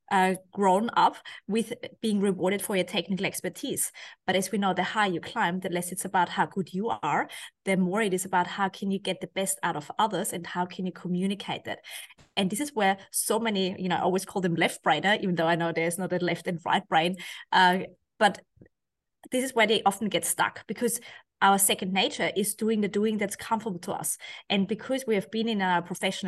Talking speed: 230 wpm